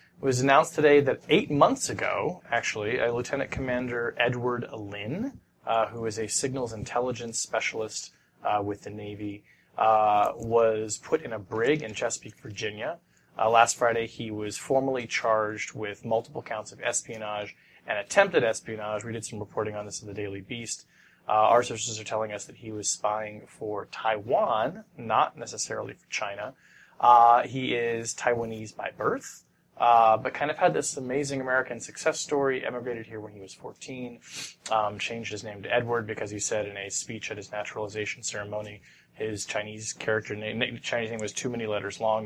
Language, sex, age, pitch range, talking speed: English, male, 20-39, 105-125 Hz, 175 wpm